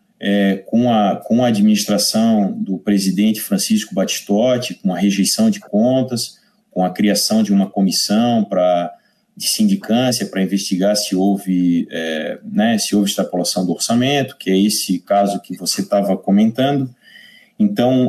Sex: male